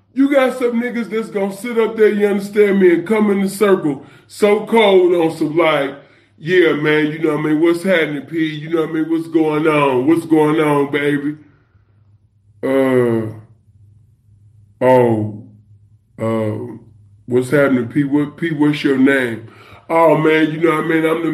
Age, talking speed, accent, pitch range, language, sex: 20-39, 180 wpm, American, 155-175 Hz, English, female